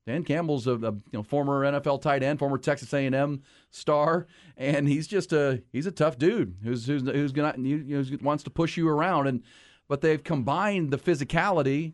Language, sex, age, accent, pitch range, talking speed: English, male, 40-59, American, 130-155 Hz, 190 wpm